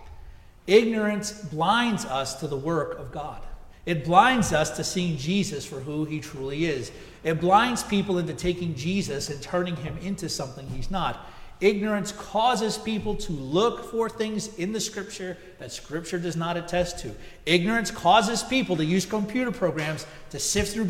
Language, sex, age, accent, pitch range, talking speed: English, male, 40-59, American, 125-190 Hz, 165 wpm